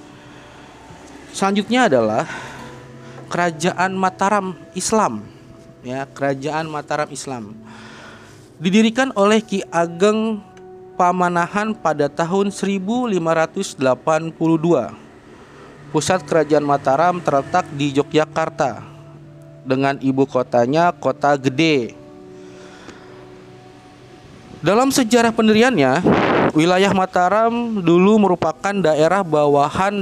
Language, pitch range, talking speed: Indonesian, 140-190 Hz, 75 wpm